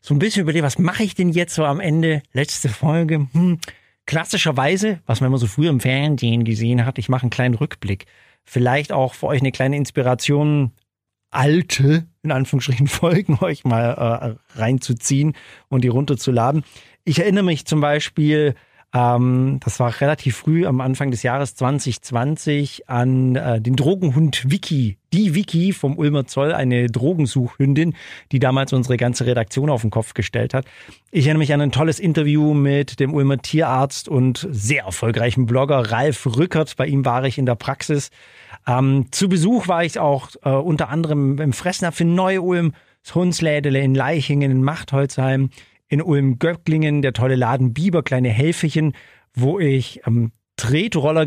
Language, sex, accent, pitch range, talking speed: German, male, German, 130-155 Hz, 160 wpm